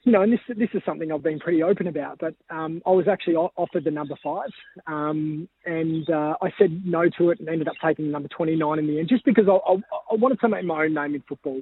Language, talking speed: English, 275 wpm